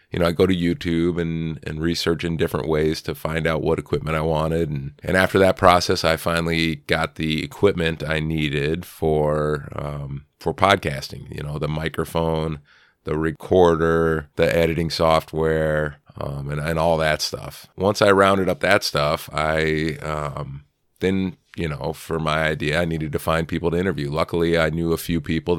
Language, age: English, 30-49